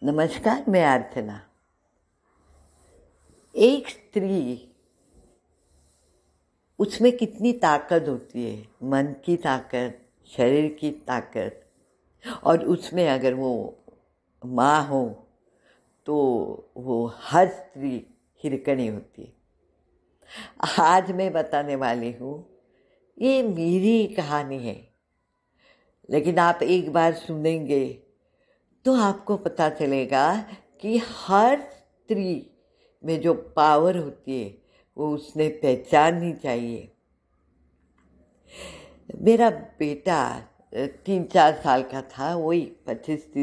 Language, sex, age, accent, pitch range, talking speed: Marathi, female, 60-79, native, 125-185 Hz, 80 wpm